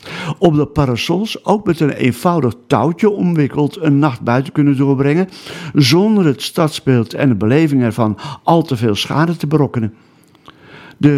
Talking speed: 150 wpm